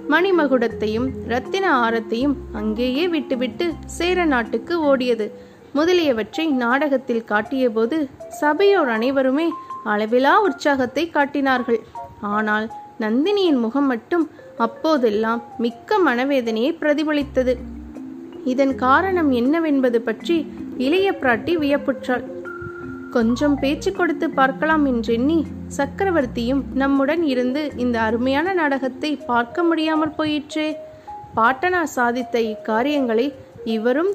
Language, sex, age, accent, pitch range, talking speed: Tamil, female, 20-39, native, 235-310 Hz, 90 wpm